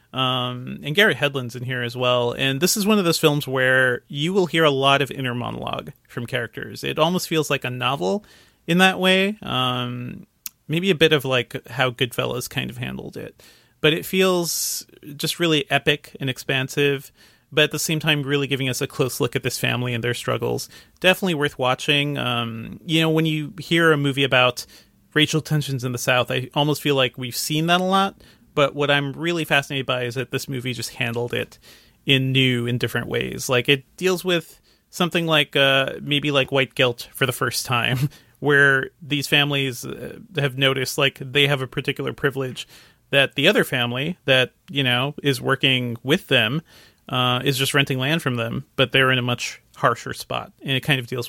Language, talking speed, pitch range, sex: English, 200 wpm, 125-155 Hz, male